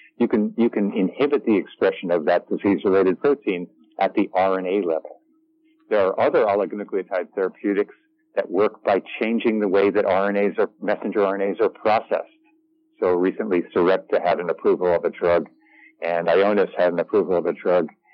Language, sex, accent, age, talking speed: English, male, American, 50-69, 165 wpm